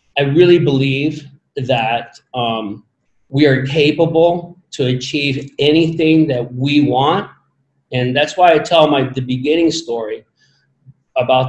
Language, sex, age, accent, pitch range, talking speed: English, male, 40-59, American, 125-150 Hz, 125 wpm